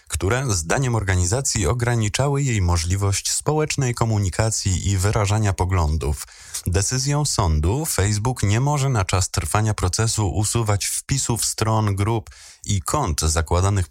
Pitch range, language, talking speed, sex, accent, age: 90-120 Hz, Polish, 115 wpm, male, native, 20-39